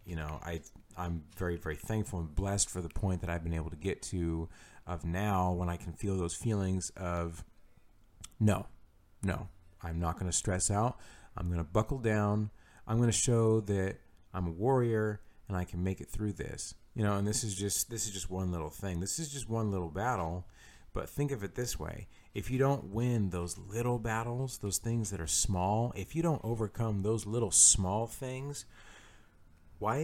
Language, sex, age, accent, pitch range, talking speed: English, male, 40-59, American, 90-110 Hz, 200 wpm